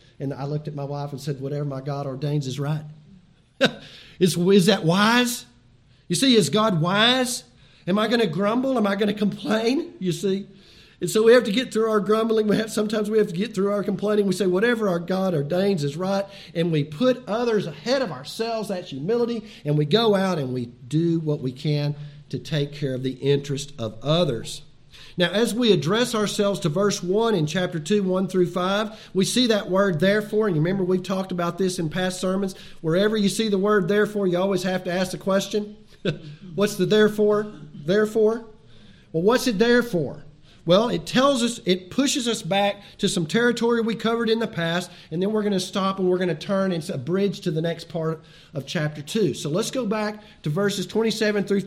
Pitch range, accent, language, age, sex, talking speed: 155-210 Hz, American, English, 50-69, male, 215 wpm